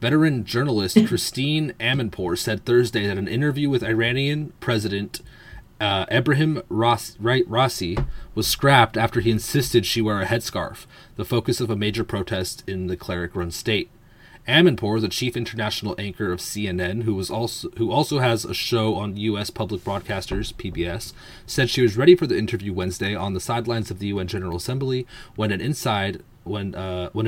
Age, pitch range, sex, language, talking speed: 30-49, 105-125 Hz, male, English, 170 wpm